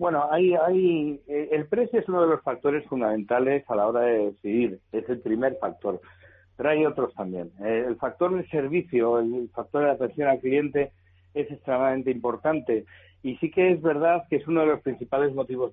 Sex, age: male, 60-79